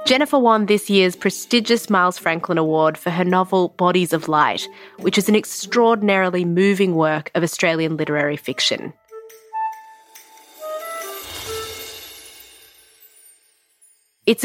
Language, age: English, 20-39